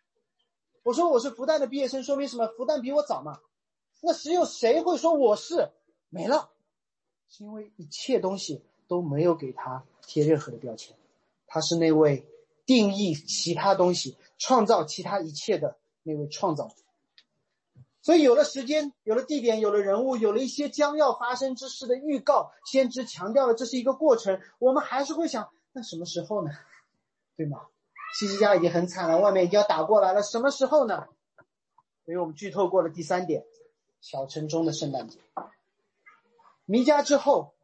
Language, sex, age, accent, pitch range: Chinese, male, 30-49, native, 185-295 Hz